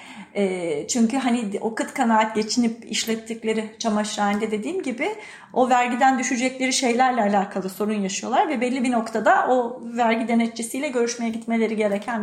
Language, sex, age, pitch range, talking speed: Turkish, female, 40-59, 210-250 Hz, 130 wpm